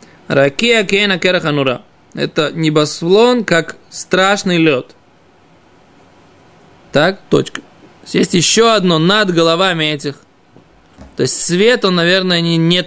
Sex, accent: male, native